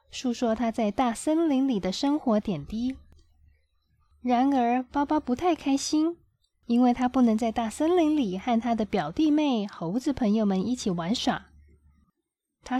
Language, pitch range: Chinese, 205-285 Hz